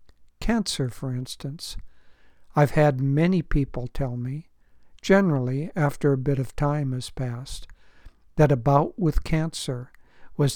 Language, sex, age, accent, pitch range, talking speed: English, male, 60-79, American, 130-150 Hz, 130 wpm